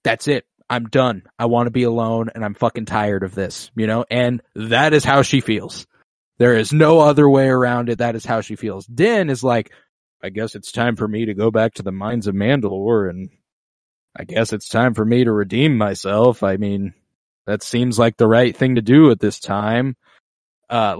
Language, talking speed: English, 215 wpm